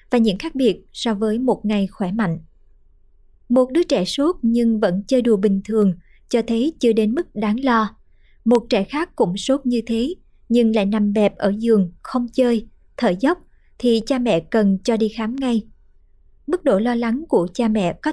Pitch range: 205-250 Hz